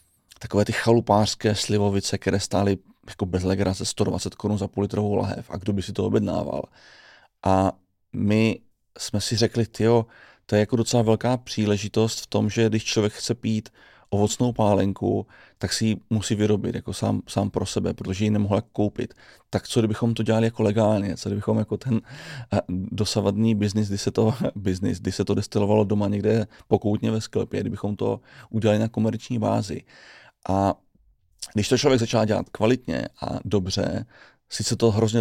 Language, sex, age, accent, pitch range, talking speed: Czech, male, 30-49, native, 100-115 Hz, 170 wpm